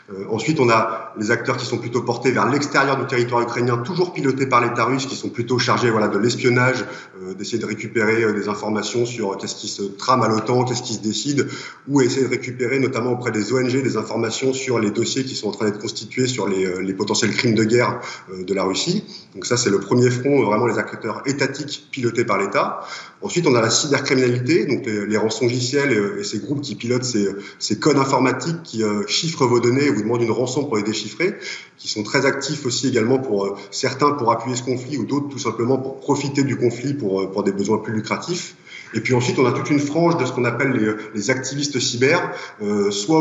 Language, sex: French, male